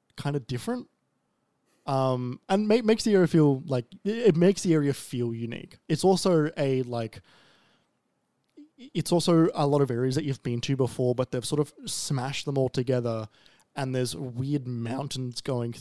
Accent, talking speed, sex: Australian, 165 wpm, male